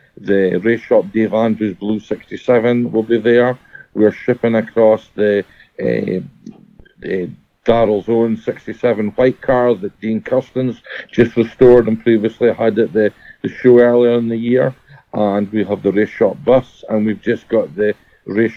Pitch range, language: 110-120 Hz, English